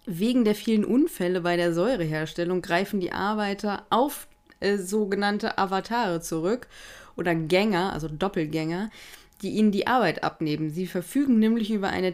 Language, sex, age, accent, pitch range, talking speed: German, female, 20-39, German, 175-205 Hz, 145 wpm